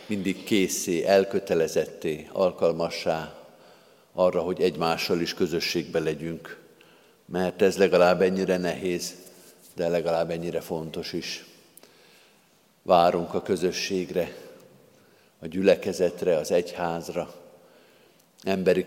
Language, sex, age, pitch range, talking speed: Hungarian, male, 50-69, 85-95 Hz, 90 wpm